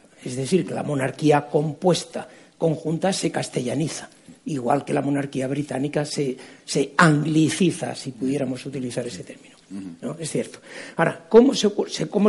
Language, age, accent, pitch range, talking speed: Spanish, 60-79, Spanish, 155-220 Hz, 125 wpm